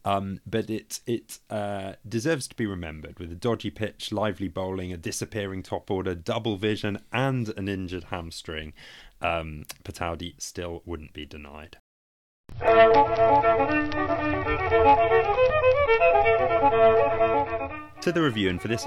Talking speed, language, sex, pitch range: 120 wpm, English, male, 90-115 Hz